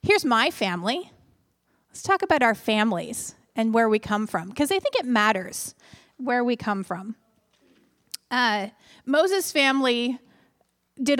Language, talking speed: English, 140 wpm